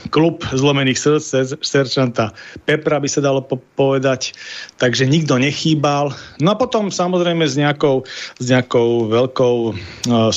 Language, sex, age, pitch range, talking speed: Slovak, male, 40-59, 120-145 Hz, 125 wpm